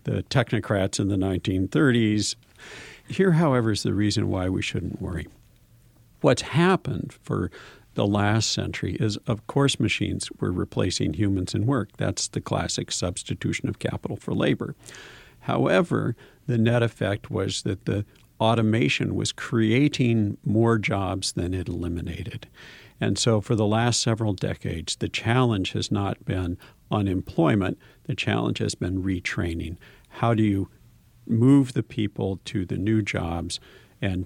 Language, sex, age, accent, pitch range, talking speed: English, male, 50-69, American, 95-120 Hz, 140 wpm